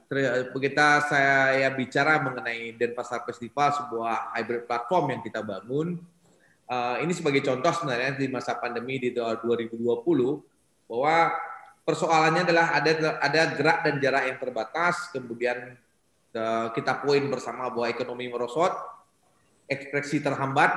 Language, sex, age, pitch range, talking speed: Indonesian, male, 20-39, 120-145 Hz, 125 wpm